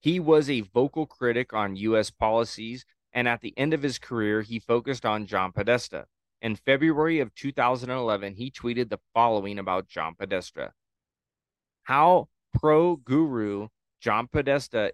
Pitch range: 100-125 Hz